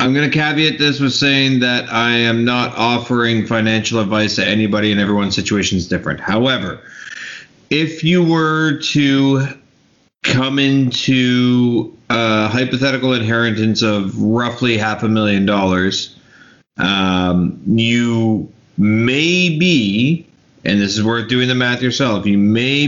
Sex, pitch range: male, 105-125 Hz